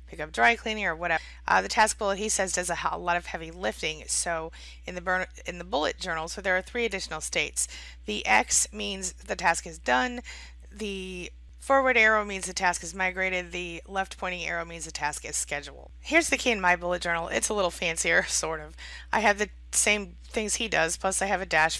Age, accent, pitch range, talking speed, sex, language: 30-49, American, 160-205 Hz, 220 wpm, female, English